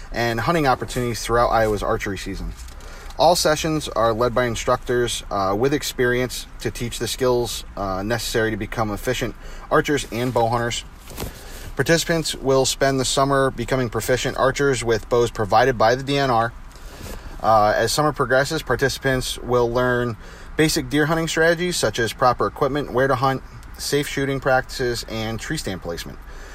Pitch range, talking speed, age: 110-140 Hz, 155 wpm, 30-49